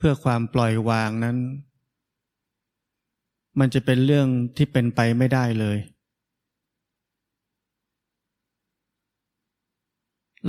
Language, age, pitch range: Thai, 20-39, 120-135 Hz